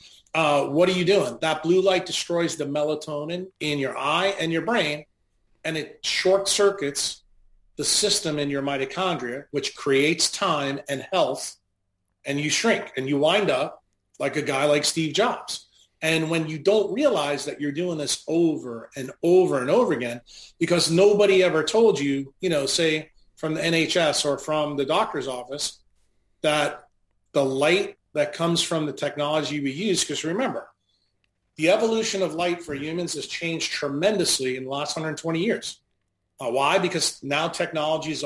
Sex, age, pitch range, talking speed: male, 40-59, 140-180 Hz, 170 wpm